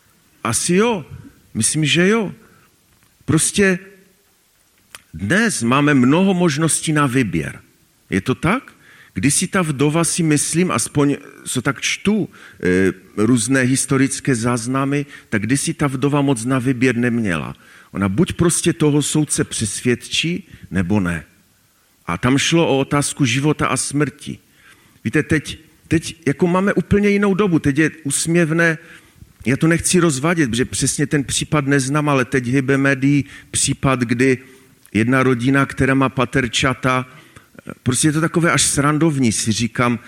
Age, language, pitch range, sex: 40-59, Czech, 115-150 Hz, male